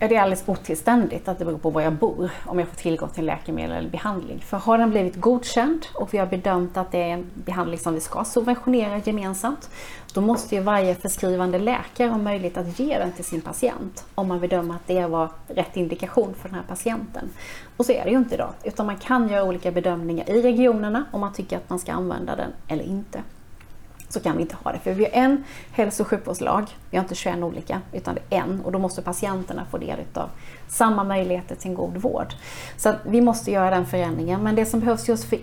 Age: 30-49